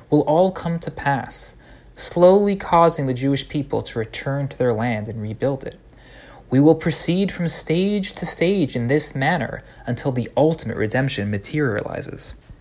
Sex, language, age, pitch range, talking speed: male, English, 30-49, 110-160 Hz, 155 wpm